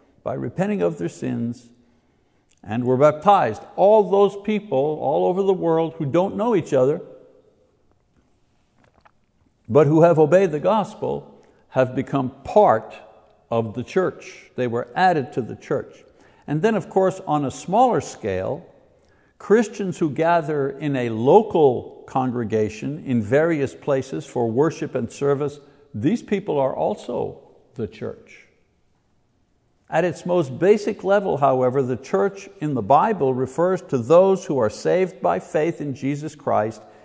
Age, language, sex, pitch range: 60-79, English, male, 125-185 Hz